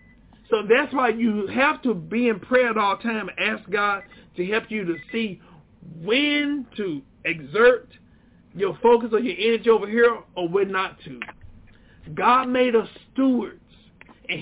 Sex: male